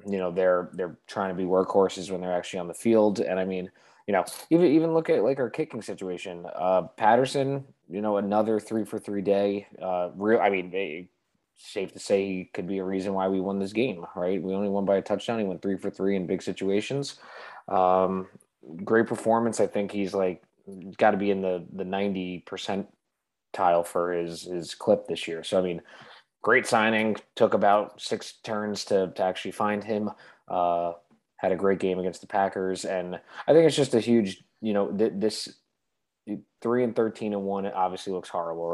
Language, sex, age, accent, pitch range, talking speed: English, male, 20-39, American, 90-105 Hz, 205 wpm